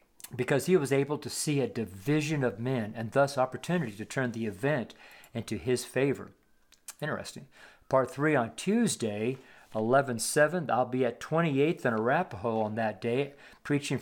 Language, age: English, 50-69